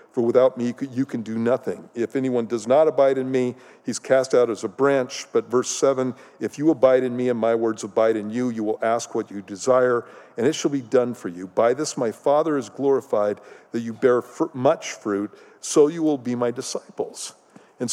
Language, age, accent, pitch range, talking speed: English, 50-69, American, 120-160 Hz, 220 wpm